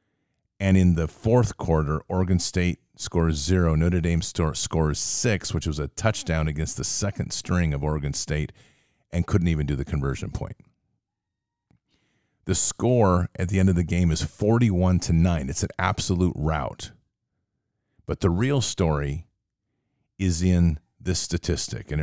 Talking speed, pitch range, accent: 150 wpm, 80-105 Hz, American